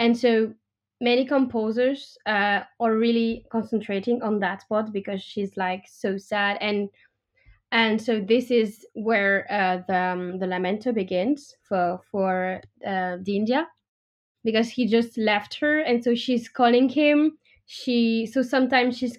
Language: English